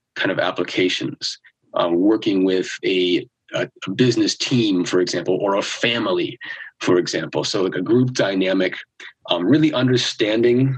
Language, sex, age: English, male, 30-49